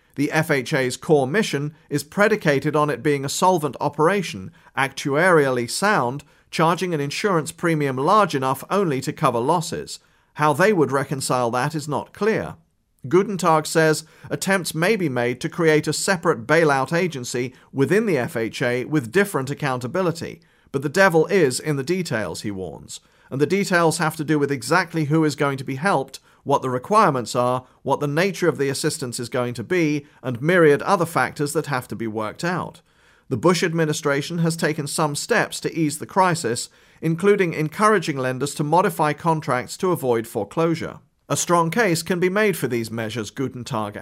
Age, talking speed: 40-59, 175 wpm